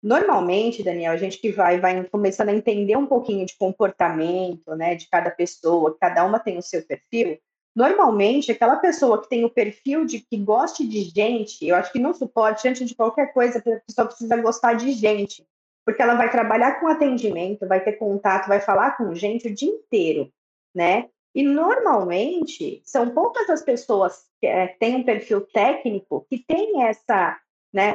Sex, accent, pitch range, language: female, Brazilian, 200-270 Hz, Portuguese